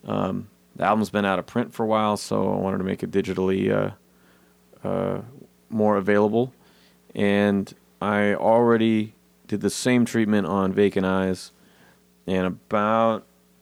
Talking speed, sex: 145 wpm, male